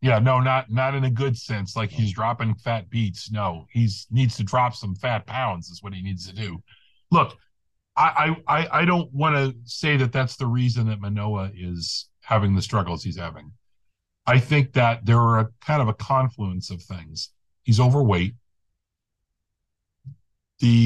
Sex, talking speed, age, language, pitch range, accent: male, 180 wpm, 40-59, English, 100-130 Hz, American